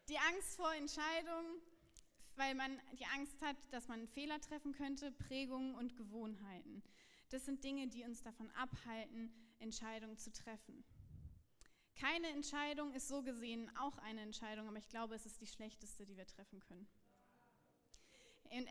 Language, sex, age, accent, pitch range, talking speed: German, female, 20-39, German, 220-275 Hz, 155 wpm